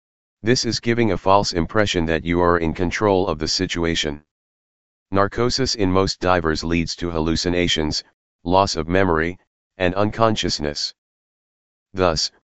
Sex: male